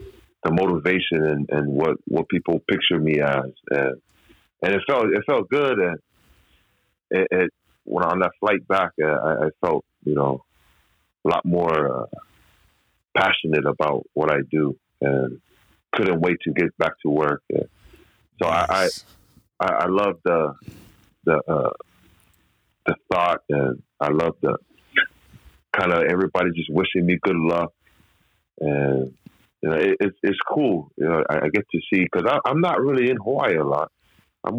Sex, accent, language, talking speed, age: male, American, English, 160 wpm, 30-49